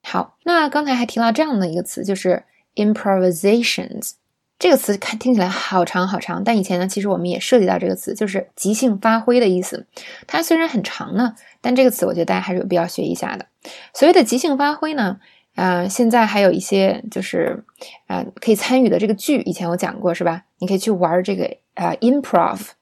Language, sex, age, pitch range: Chinese, female, 20-39, 185-230 Hz